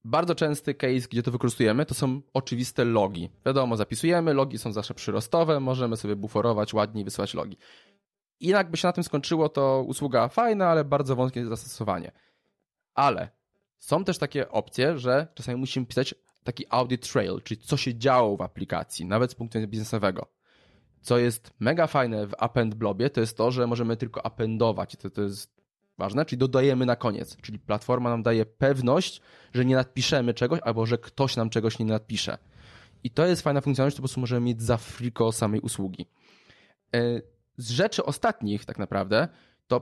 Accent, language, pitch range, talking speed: native, Polish, 110-135 Hz, 175 wpm